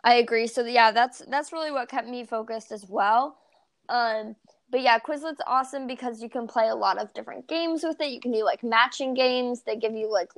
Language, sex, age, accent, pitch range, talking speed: English, female, 20-39, American, 225-280 Hz, 225 wpm